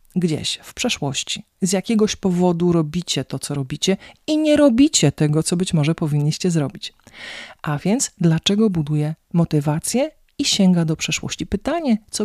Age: 40-59